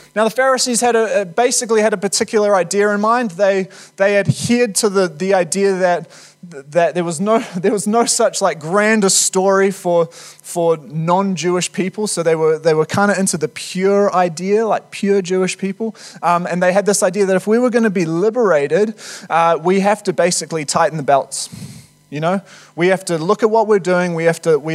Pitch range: 175-215 Hz